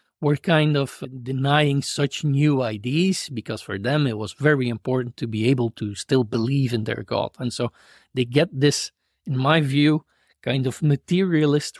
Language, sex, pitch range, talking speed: English, male, 120-155 Hz, 175 wpm